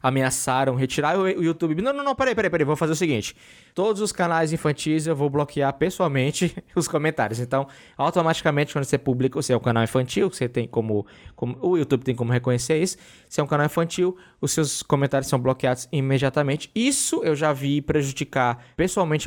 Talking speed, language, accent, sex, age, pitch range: 190 wpm, Portuguese, Brazilian, male, 20-39, 135-185 Hz